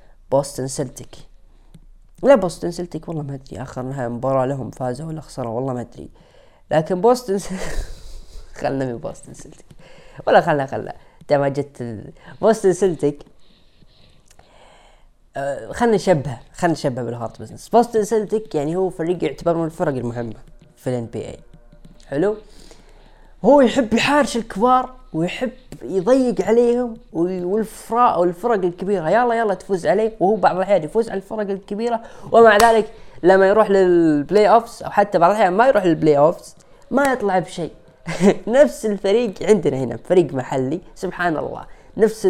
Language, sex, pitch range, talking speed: Arabic, female, 145-220 Hz, 140 wpm